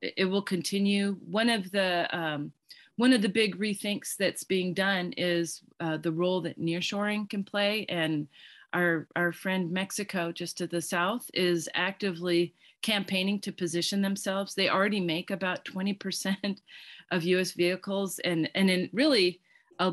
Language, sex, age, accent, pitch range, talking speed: English, female, 40-59, American, 165-195 Hz, 160 wpm